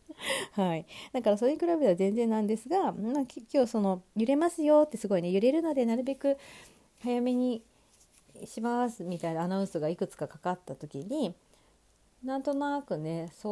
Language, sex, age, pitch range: Japanese, female, 40-59, 175-250 Hz